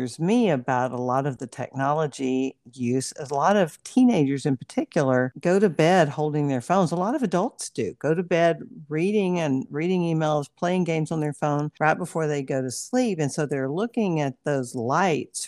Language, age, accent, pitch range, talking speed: English, 50-69, American, 135-170 Hz, 195 wpm